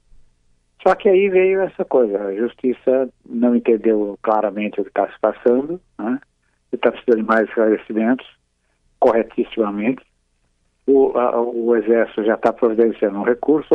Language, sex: Portuguese, male